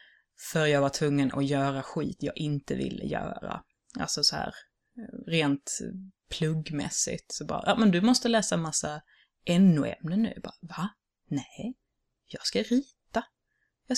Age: 20-39